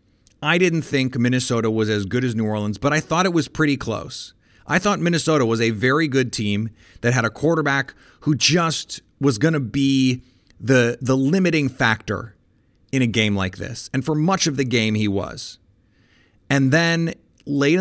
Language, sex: English, male